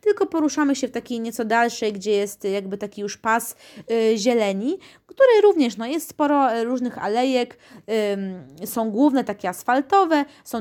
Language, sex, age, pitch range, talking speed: Polish, female, 20-39, 205-250 Hz, 160 wpm